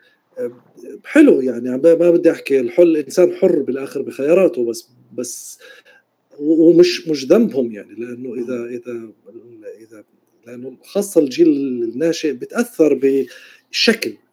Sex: male